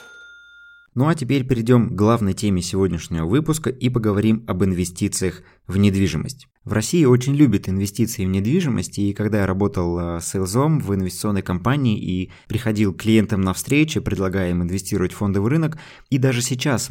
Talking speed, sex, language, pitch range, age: 160 wpm, male, Russian, 95-125 Hz, 20-39